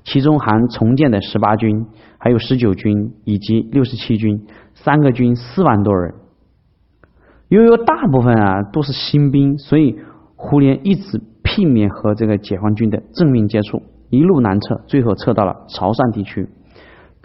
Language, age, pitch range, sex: Chinese, 30-49, 105-140 Hz, male